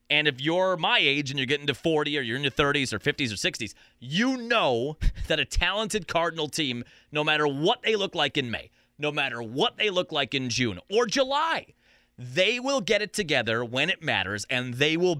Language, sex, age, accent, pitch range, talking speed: English, male, 30-49, American, 135-210 Hz, 215 wpm